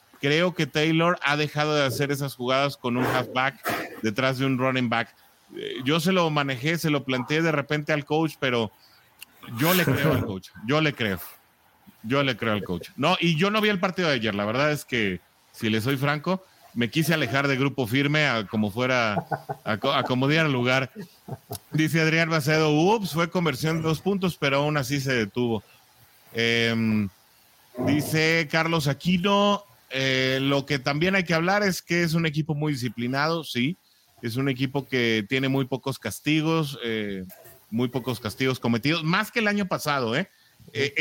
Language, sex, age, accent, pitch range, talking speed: English, male, 30-49, Mexican, 120-160 Hz, 185 wpm